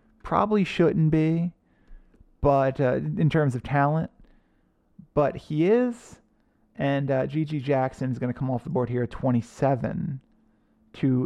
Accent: American